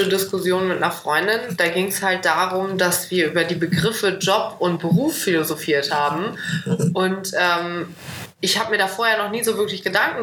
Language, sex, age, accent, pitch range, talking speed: German, female, 20-39, German, 175-215 Hz, 180 wpm